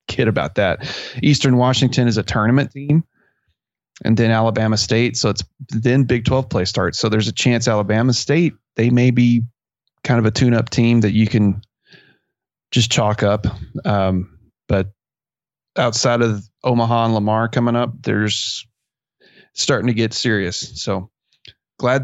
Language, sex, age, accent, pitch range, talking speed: English, male, 30-49, American, 105-130 Hz, 150 wpm